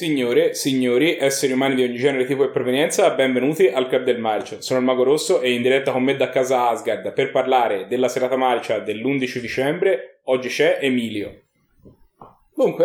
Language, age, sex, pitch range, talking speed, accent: Italian, 20-39, male, 130-185 Hz, 175 wpm, native